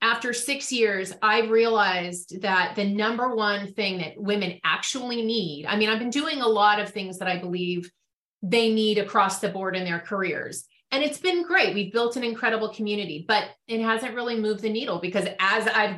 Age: 30-49